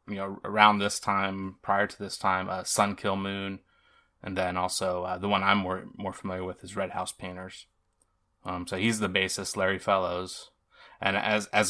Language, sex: English, male